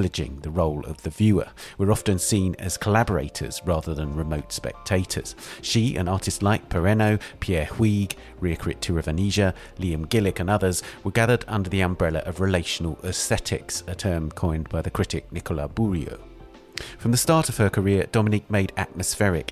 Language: English